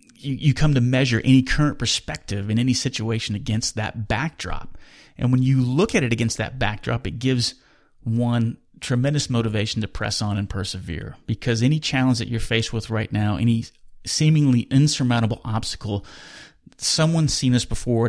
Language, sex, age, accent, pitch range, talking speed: English, male, 30-49, American, 105-125 Hz, 165 wpm